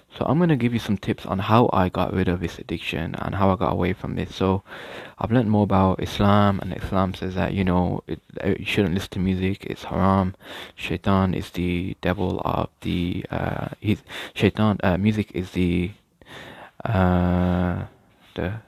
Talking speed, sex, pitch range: 185 wpm, male, 90-105 Hz